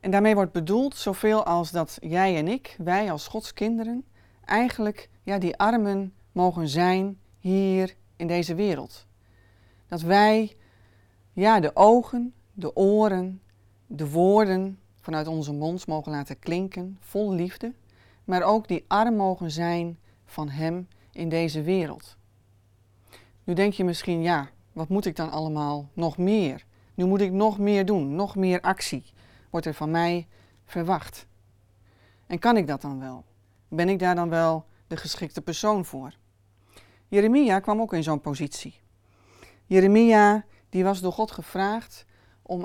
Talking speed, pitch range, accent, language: 145 wpm, 130-195 Hz, Dutch, Dutch